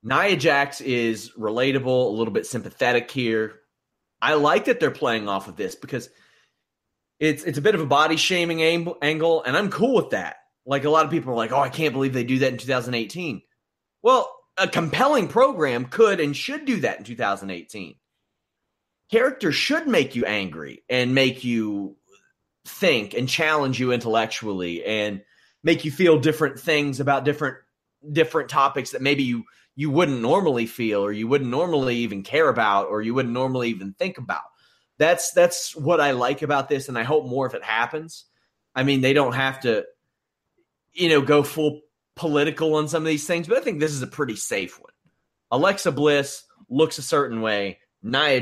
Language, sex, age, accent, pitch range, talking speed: English, male, 30-49, American, 110-155 Hz, 185 wpm